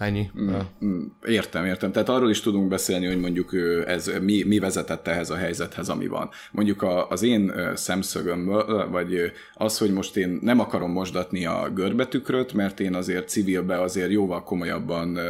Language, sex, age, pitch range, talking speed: Hungarian, male, 30-49, 90-105 Hz, 155 wpm